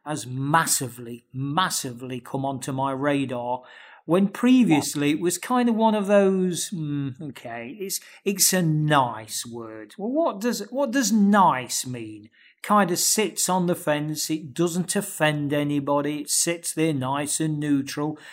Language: English